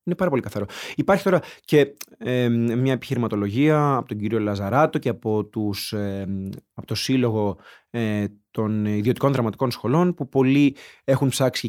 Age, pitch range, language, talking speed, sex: 30-49, 110-150 Hz, Greek, 135 wpm, male